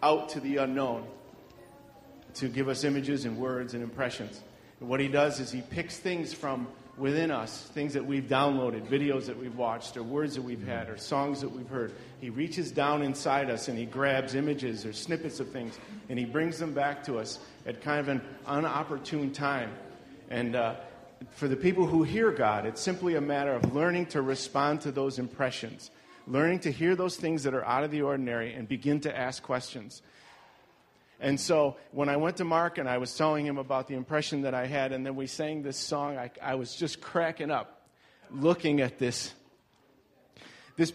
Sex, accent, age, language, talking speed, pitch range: male, American, 40-59, English, 200 wpm, 130-150 Hz